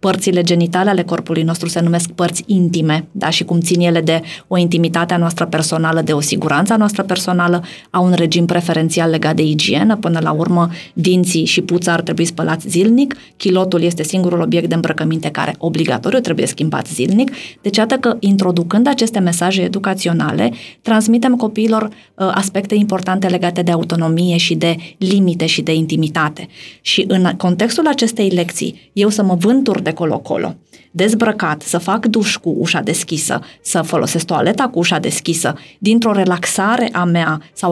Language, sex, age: Romanian, female, 20-39